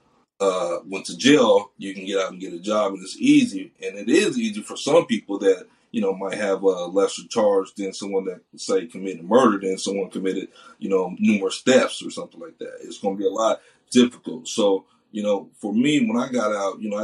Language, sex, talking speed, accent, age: English, male, 230 wpm, American, 30-49